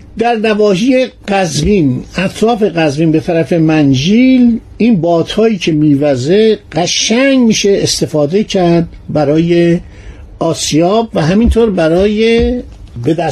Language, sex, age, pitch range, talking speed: Persian, male, 60-79, 155-210 Hz, 100 wpm